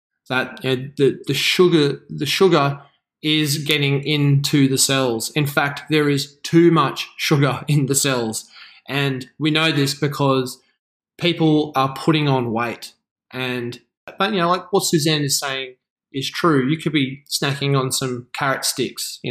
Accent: Australian